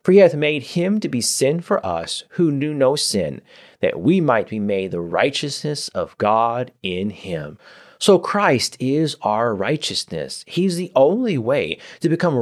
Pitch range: 115-165 Hz